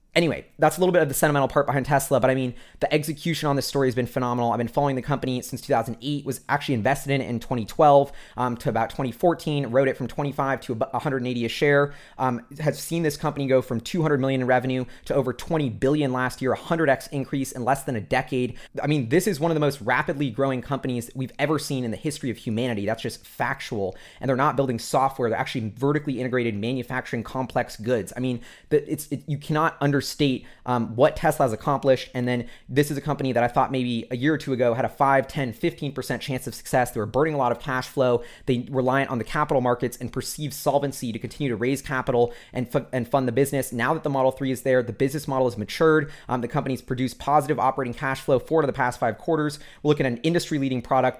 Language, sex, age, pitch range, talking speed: English, male, 20-39, 125-145 Hz, 240 wpm